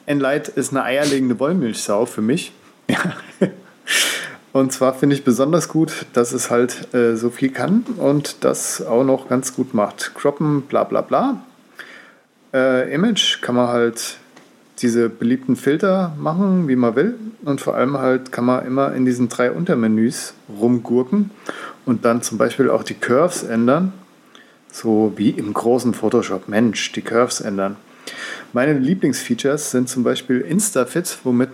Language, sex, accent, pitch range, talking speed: German, male, German, 115-140 Hz, 150 wpm